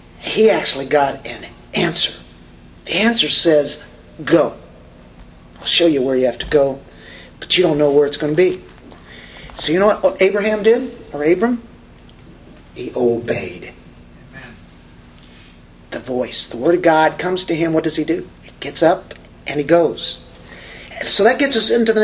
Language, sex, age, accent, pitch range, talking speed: English, male, 40-59, American, 120-170 Hz, 165 wpm